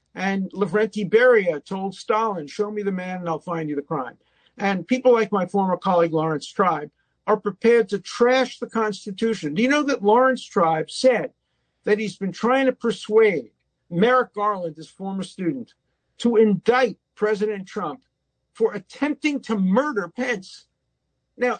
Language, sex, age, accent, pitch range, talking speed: English, male, 50-69, American, 185-240 Hz, 160 wpm